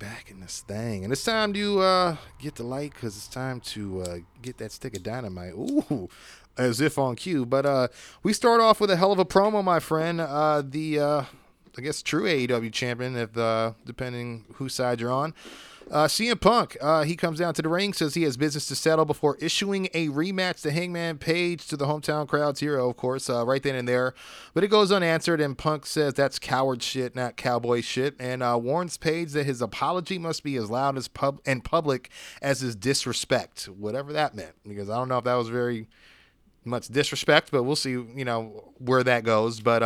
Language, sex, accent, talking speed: English, male, American, 215 wpm